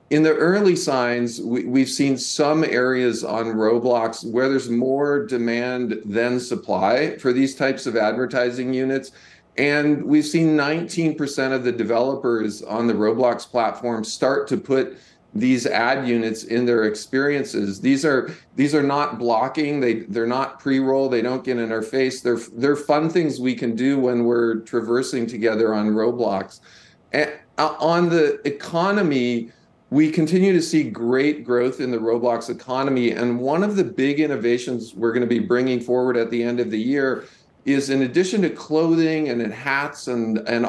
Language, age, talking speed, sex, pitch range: English, 40-59, 165 wpm, male, 120-145 Hz